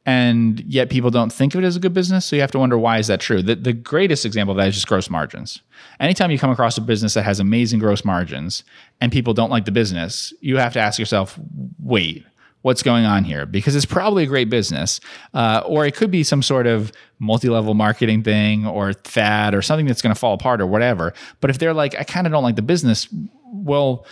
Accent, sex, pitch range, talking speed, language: American, male, 105-130 Hz, 240 wpm, English